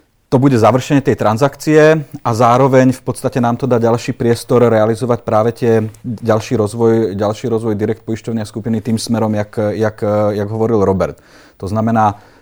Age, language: 30-49, Czech